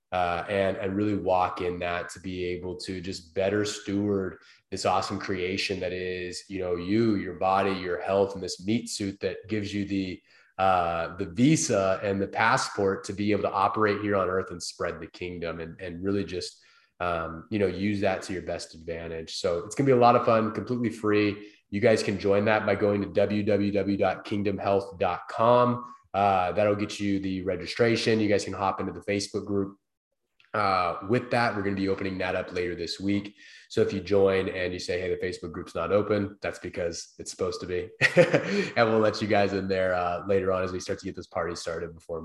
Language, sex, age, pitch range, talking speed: English, male, 20-39, 90-105 Hz, 215 wpm